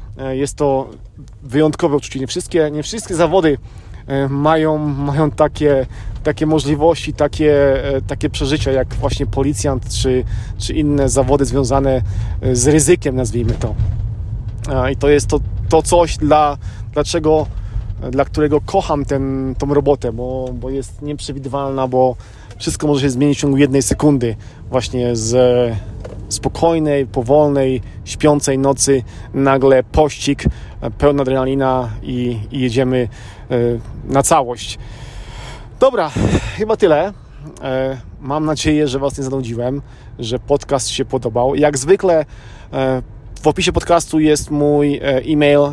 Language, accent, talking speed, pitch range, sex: Polish, native, 120 wpm, 120-145 Hz, male